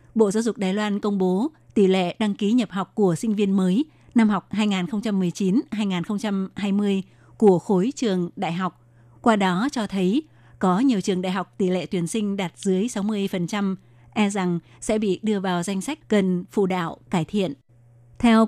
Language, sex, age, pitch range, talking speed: Vietnamese, female, 20-39, 180-215 Hz, 180 wpm